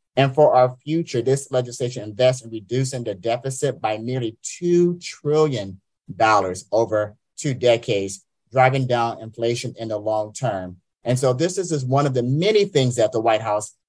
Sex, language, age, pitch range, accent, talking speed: male, English, 30-49, 110-135 Hz, American, 170 wpm